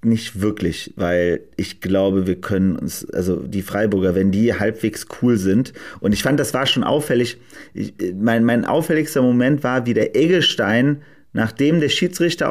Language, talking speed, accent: German, 170 wpm, German